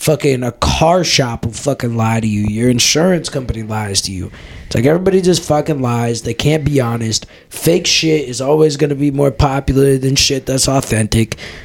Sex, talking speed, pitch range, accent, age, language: male, 195 wpm, 115-150 Hz, American, 20-39, English